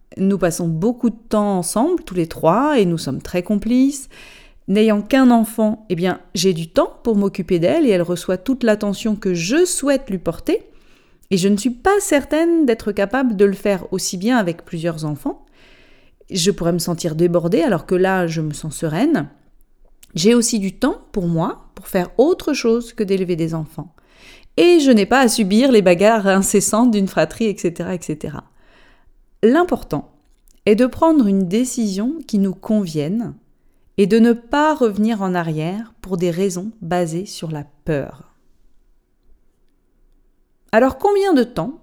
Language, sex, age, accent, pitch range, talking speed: French, female, 30-49, French, 180-255 Hz, 170 wpm